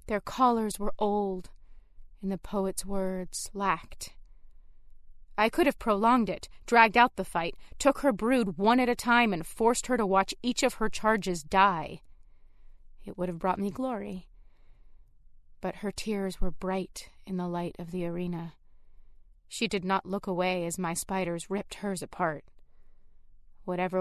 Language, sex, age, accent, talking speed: English, female, 30-49, American, 160 wpm